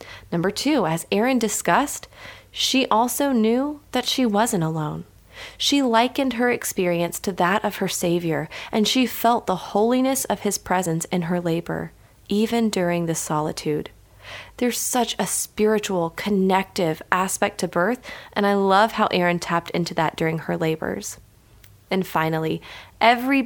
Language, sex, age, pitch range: English, female, 30-49, 175-230 Hz